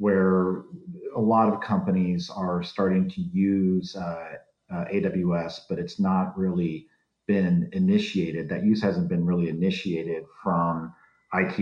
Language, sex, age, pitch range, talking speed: English, male, 40-59, 85-105 Hz, 135 wpm